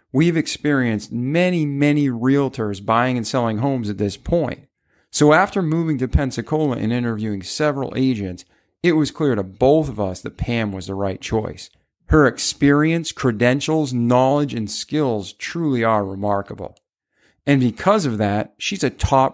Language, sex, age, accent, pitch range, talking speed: English, male, 40-59, American, 110-150 Hz, 155 wpm